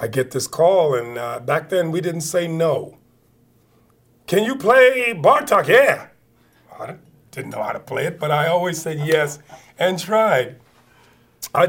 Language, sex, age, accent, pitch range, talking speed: English, male, 40-59, American, 130-175 Hz, 165 wpm